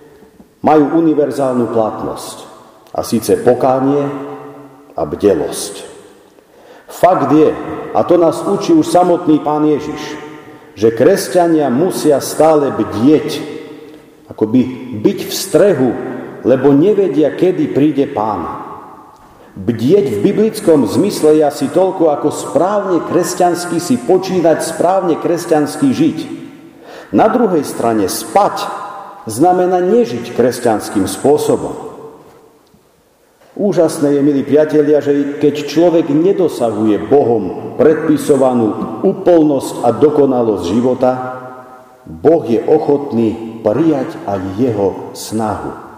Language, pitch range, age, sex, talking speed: Slovak, 130-175 Hz, 50-69, male, 100 wpm